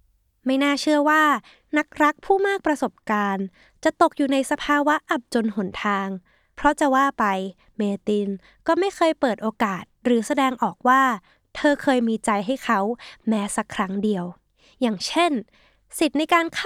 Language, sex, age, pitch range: Thai, female, 20-39, 200-275 Hz